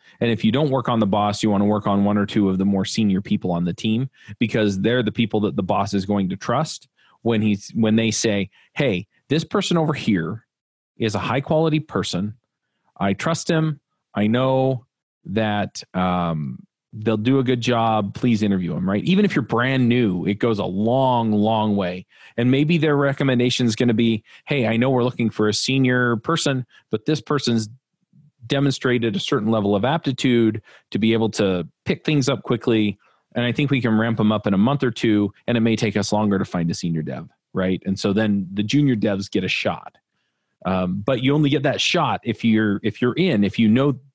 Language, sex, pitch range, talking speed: English, male, 105-130 Hz, 215 wpm